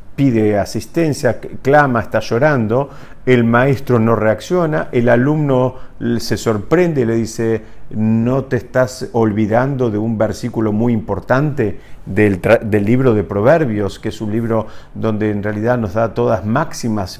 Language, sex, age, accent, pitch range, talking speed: Spanish, male, 50-69, Argentinian, 105-130 Hz, 145 wpm